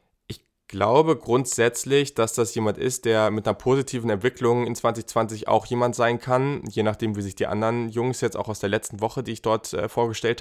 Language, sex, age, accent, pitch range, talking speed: German, male, 20-39, German, 110-125 Hz, 200 wpm